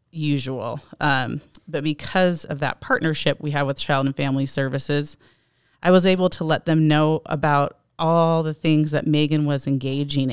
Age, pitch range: 30-49, 140-165 Hz